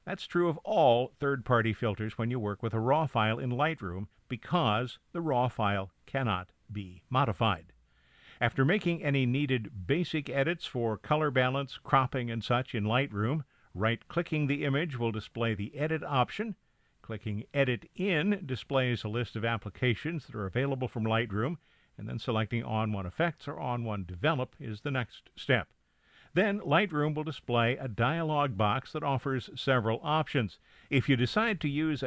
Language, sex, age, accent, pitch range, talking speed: English, male, 50-69, American, 110-145 Hz, 160 wpm